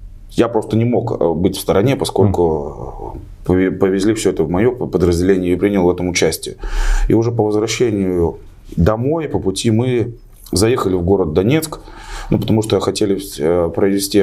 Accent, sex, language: native, male, Russian